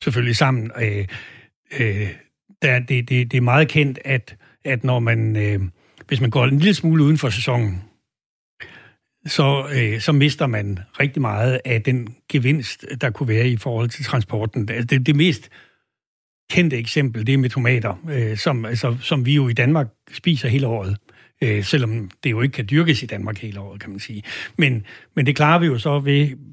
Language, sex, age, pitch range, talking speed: Danish, male, 60-79, 115-145 Hz, 160 wpm